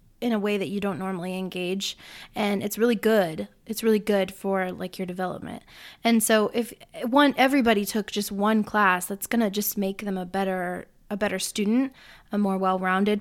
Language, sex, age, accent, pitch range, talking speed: English, female, 20-39, American, 195-230 Hz, 185 wpm